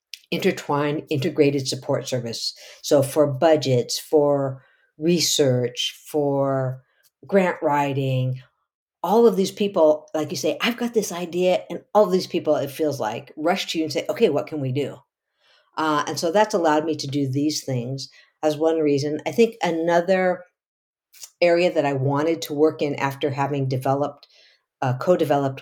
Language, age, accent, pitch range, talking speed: English, 60-79, American, 135-165 Hz, 160 wpm